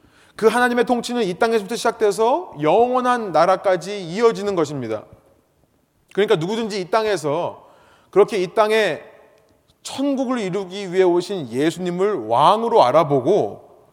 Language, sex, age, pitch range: Korean, male, 30-49, 185-235 Hz